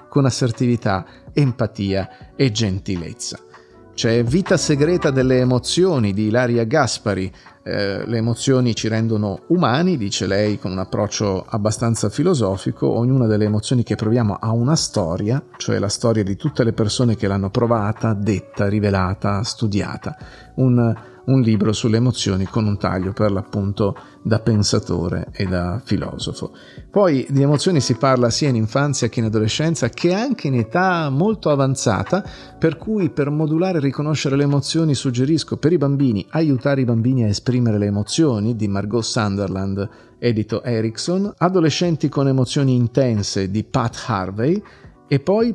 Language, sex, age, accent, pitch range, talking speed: Italian, male, 40-59, native, 105-140 Hz, 150 wpm